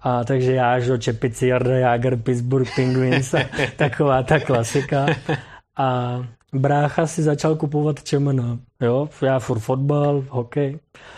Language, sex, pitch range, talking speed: Czech, male, 125-150 Hz, 130 wpm